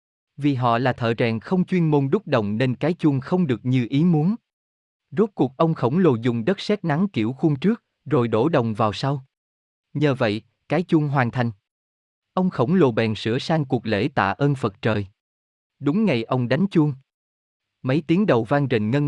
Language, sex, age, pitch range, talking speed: Vietnamese, male, 20-39, 110-155 Hz, 200 wpm